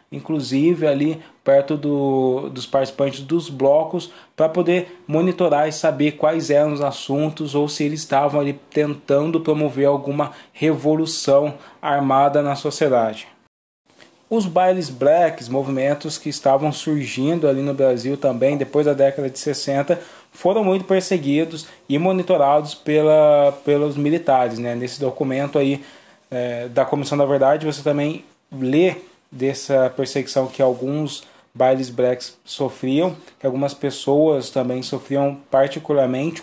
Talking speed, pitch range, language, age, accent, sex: 125 wpm, 135-155 Hz, Portuguese, 20-39, Brazilian, male